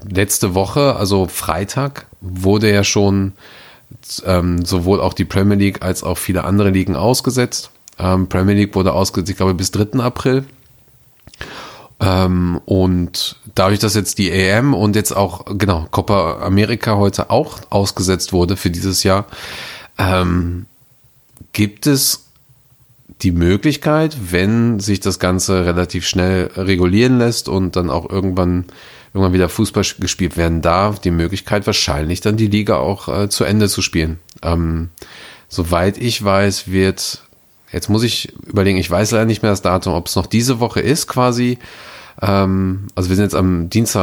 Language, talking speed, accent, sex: German, 155 wpm, German, male